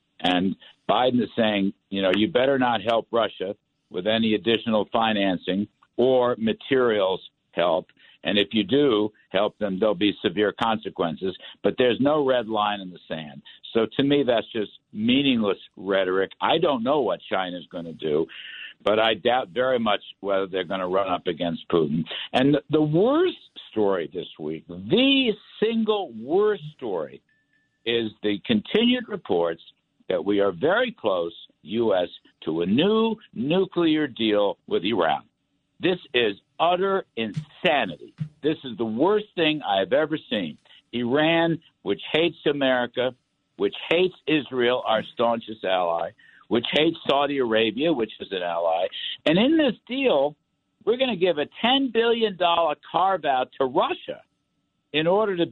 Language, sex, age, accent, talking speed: English, male, 60-79, American, 150 wpm